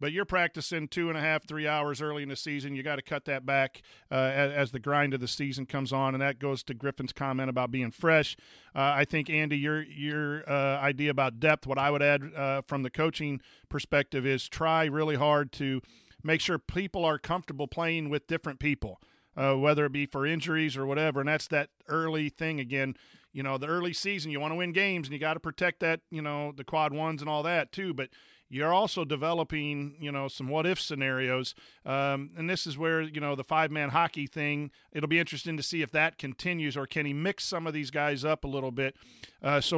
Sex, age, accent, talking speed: male, 40-59, American, 230 wpm